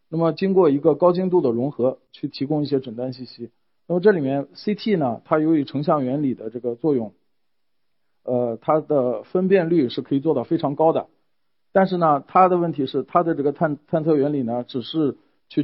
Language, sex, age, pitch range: Chinese, male, 50-69, 130-165 Hz